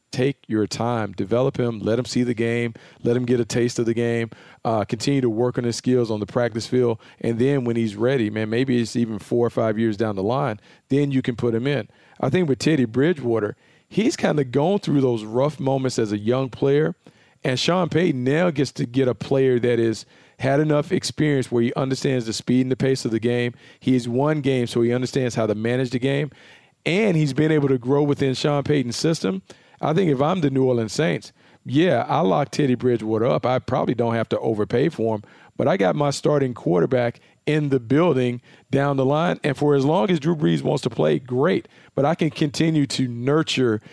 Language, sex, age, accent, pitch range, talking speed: English, male, 40-59, American, 120-145 Hz, 225 wpm